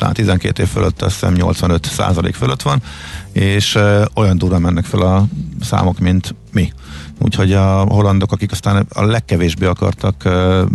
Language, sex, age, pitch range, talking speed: Hungarian, male, 50-69, 85-105 Hz, 140 wpm